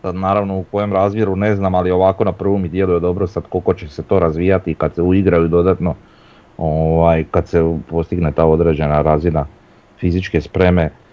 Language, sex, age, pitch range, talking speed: Croatian, male, 30-49, 85-100 Hz, 185 wpm